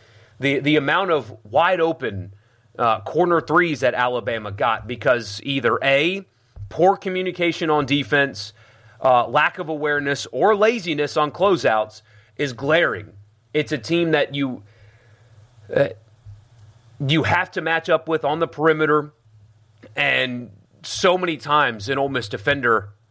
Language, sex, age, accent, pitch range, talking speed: English, male, 30-49, American, 110-155 Hz, 130 wpm